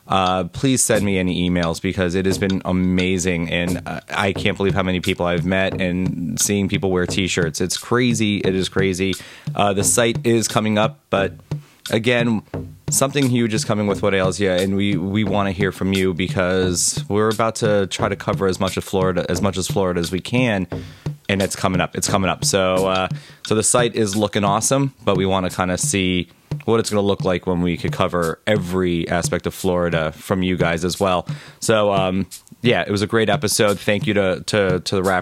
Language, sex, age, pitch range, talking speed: English, male, 20-39, 90-110 Hz, 220 wpm